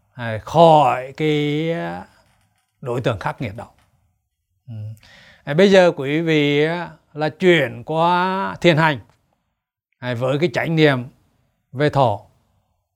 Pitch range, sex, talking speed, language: 125-190 Hz, male, 100 wpm, Vietnamese